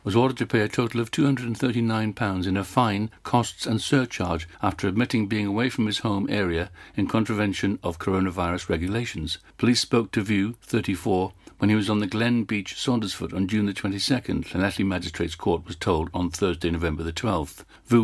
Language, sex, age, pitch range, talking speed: English, male, 60-79, 95-115 Hz, 185 wpm